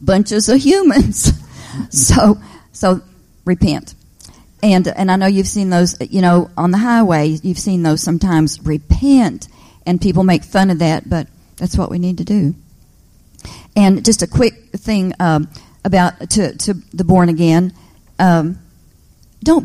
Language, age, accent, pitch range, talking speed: English, 50-69, American, 160-195 Hz, 155 wpm